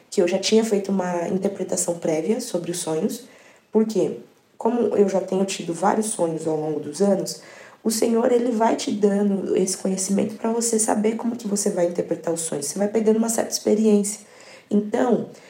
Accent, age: Brazilian, 20-39